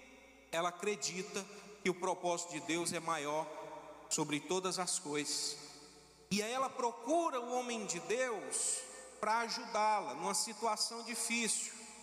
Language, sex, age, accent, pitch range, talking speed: Portuguese, male, 40-59, Brazilian, 210-260 Hz, 130 wpm